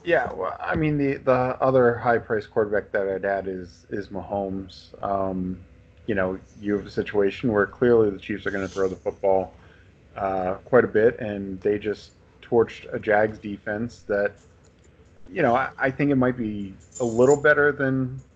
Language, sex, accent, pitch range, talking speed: English, male, American, 95-120 Hz, 185 wpm